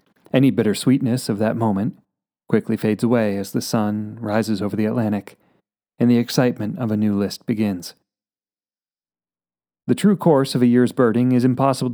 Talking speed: 165 wpm